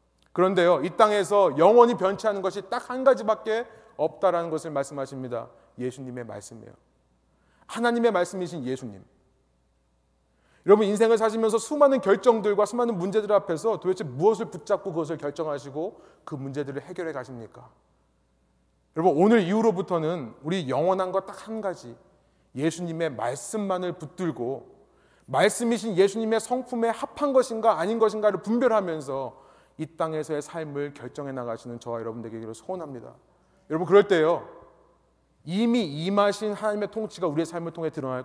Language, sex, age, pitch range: Korean, male, 30-49, 125-200 Hz